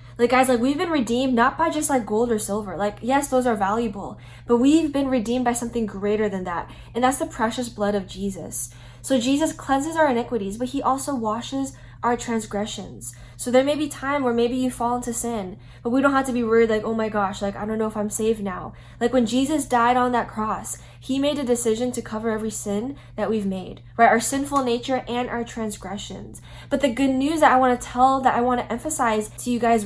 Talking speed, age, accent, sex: 230 wpm, 10-29, American, female